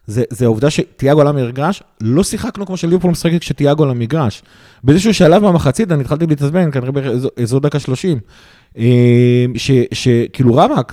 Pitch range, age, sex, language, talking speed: 120-165 Hz, 30-49, male, Hebrew, 145 wpm